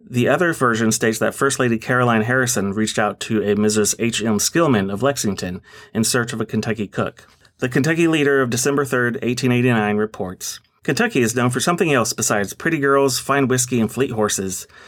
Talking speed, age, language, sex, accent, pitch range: 185 wpm, 30-49, English, male, American, 110-135 Hz